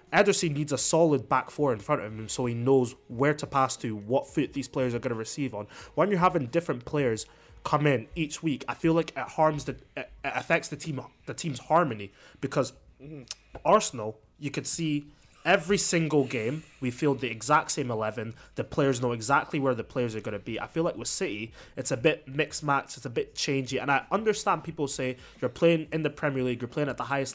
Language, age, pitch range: English, 20-39, 130-160 Hz